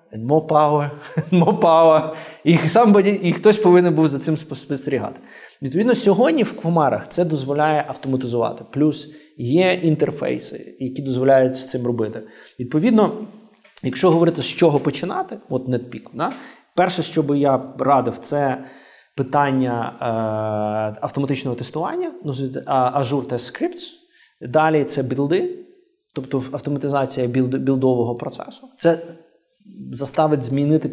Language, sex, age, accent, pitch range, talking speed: Ukrainian, male, 20-39, native, 130-175 Hz, 120 wpm